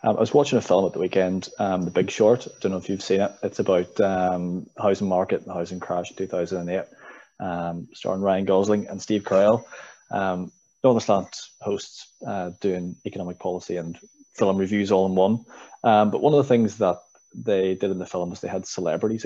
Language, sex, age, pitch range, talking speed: English, male, 20-39, 90-105 Hz, 215 wpm